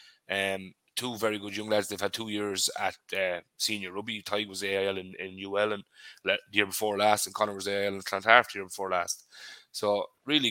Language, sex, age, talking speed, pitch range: English, male, 20-39, 210 wpm, 100-110 Hz